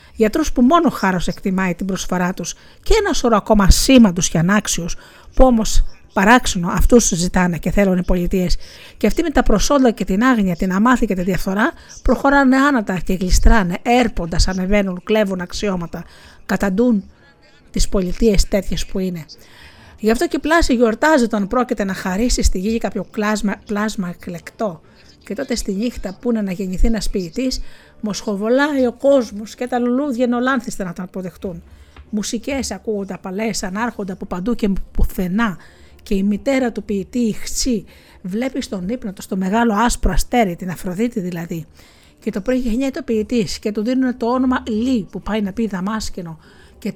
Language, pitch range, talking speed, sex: Greek, 190-245 Hz, 170 wpm, female